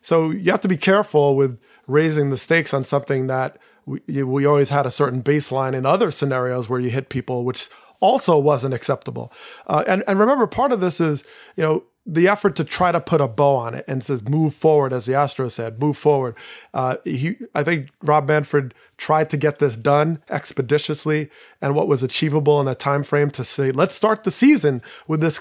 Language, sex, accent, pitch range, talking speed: English, male, American, 135-165 Hz, 215 wpm